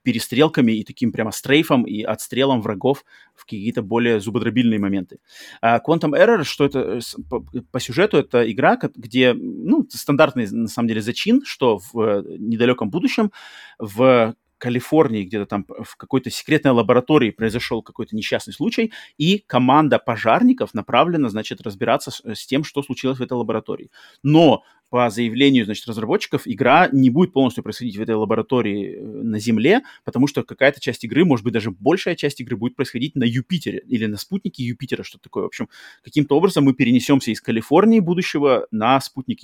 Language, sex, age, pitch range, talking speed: Russian, male, 30-49, 115-150 Hz, 160 wpm